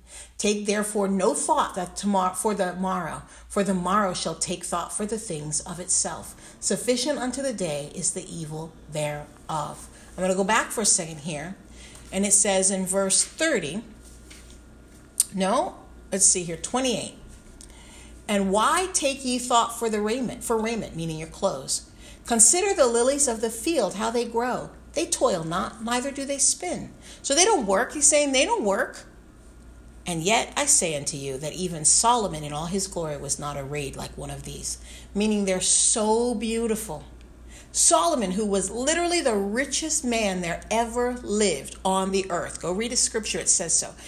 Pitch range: 165-235 Hz